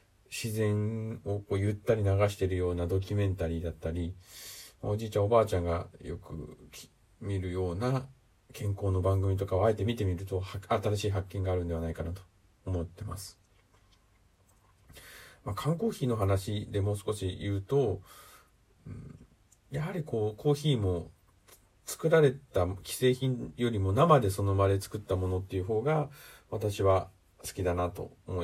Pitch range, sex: 95-110 Hz, male